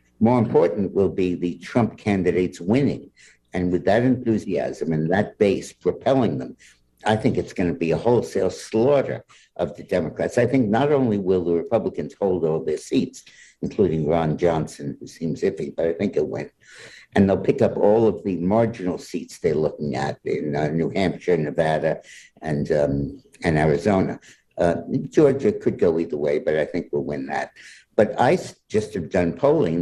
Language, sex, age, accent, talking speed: English, male, 60-79, American, 180 wpm